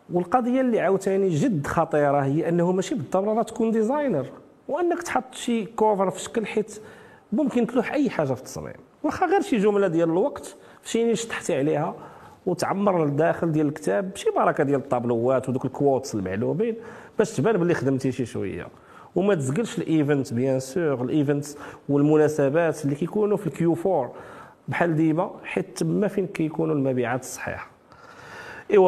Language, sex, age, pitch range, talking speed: French, male, 40-59, 135-195 Hz, 100 wpm